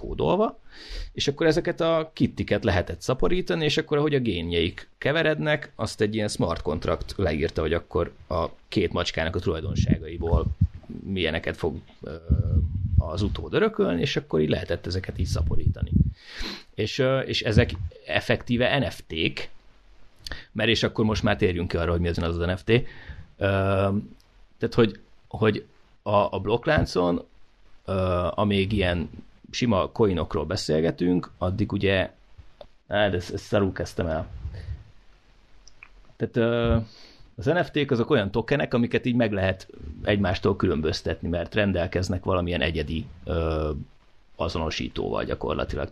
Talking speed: 120 wpm